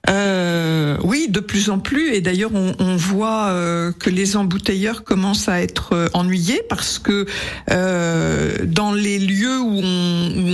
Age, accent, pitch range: 50-69, French, 175-215 Hz